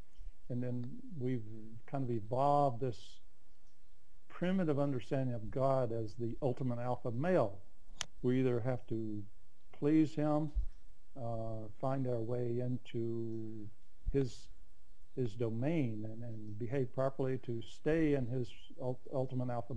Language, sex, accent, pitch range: English, male, American, 115-145 Hz